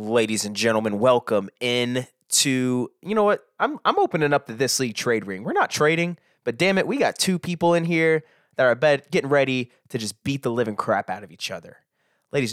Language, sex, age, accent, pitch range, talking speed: English, male, 20-39, American, 115-150 Hz, 215 wpm